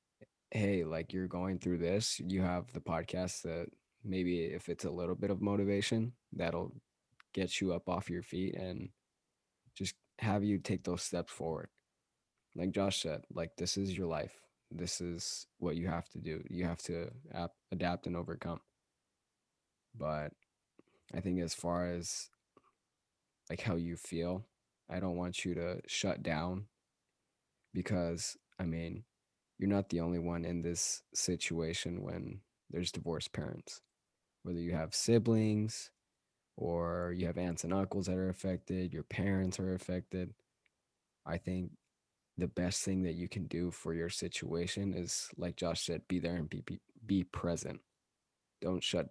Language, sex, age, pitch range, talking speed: English, male, 20-39, 85-95 Hz, 160 wpm